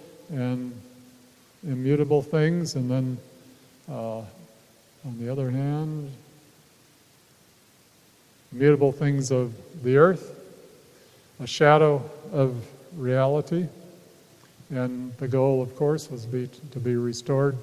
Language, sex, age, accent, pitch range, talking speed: English, male, 50-69, American, 130-150 Hz, 95 wpm